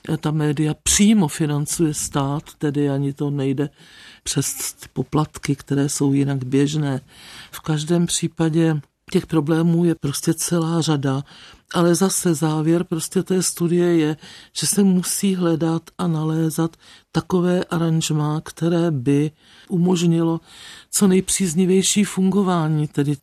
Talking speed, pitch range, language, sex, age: 125 wpm, 150-180 Hz, Czech, male, 50-69